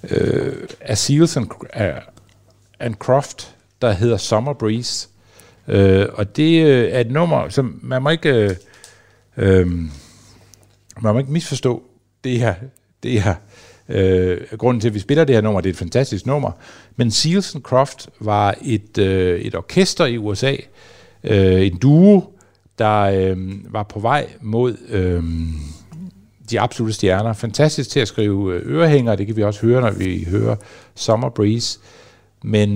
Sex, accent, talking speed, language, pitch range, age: male, native, 160 wpm, Danish, 95-120 Hz, 60-79